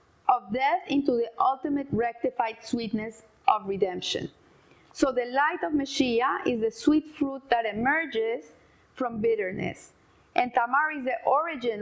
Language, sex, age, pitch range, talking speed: English, female, 30-49, 220-275 Hz, 135 wpm